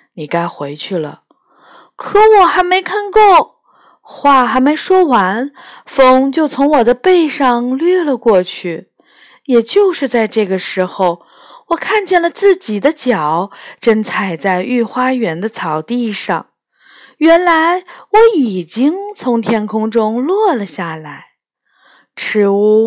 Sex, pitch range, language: female, 200-310 Hz, Chinese